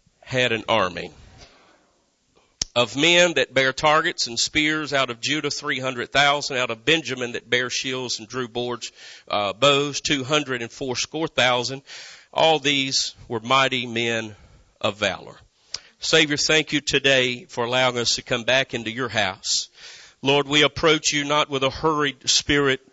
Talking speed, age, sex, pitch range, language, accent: 160 wpm, 40-59, male, 120-150 Hz, English, American